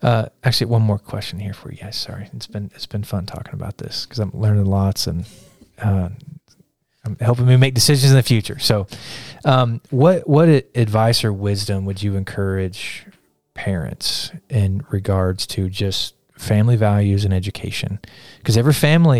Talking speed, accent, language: 170 wpm, American, English